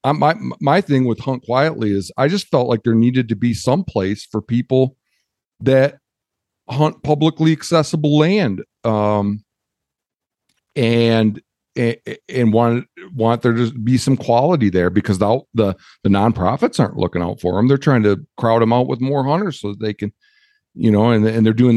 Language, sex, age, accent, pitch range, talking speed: English, male, 50-69, American, 95-125 Hz, 180 wpm